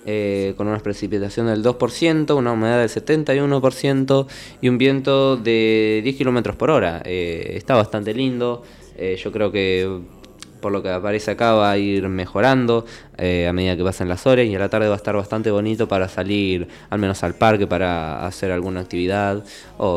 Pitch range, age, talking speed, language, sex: 95-125 Hz, 20-39, 185 wpm, Spanish, male